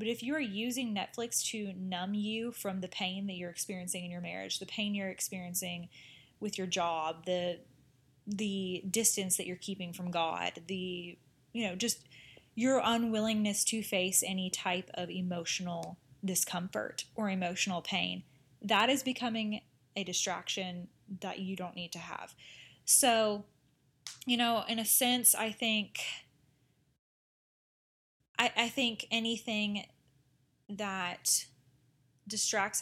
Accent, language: American, English